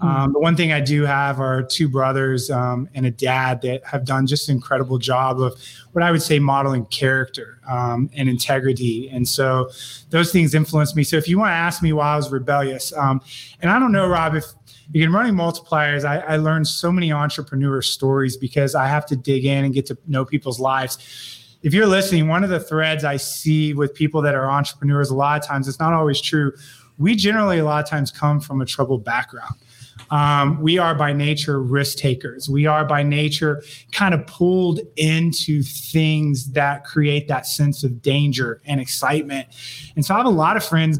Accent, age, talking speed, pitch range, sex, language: American, 20-39, 210 wpm, 135-155 Hz, male, English